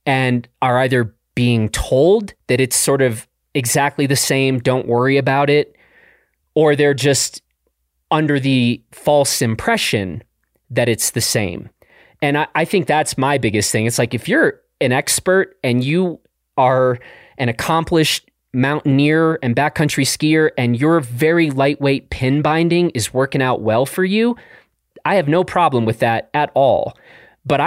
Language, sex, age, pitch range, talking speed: English, male, 30-49, 120-160 Hz, 155 wpm